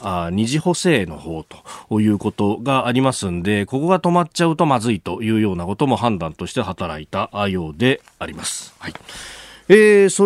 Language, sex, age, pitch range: Japanese, male, 40-59, 105-170 Hz